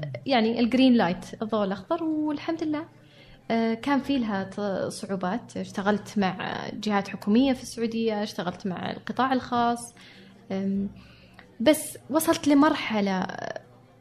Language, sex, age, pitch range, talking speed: Arabic, female, 20-39, 195-240 Hz, 105 wpm